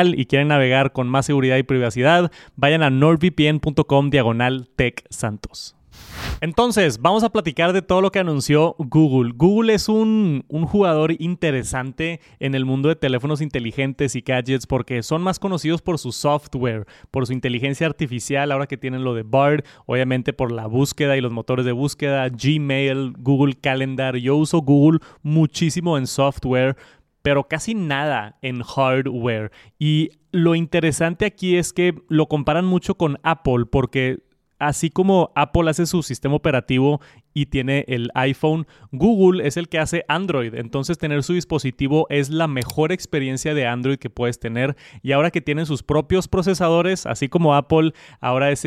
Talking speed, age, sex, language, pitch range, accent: 160 wpm, 30-49, male, Spanish, 130-160 Hz, Mexican